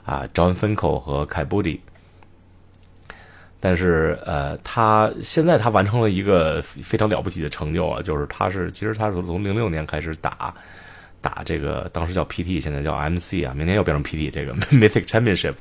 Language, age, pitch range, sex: Chinese, 30-49, 90-125 Hz, male